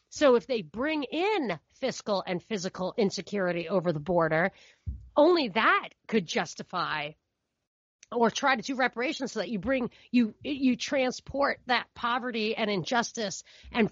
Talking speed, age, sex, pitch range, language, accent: 140 wpm, 40-59, female, 200-255 Hz, English, American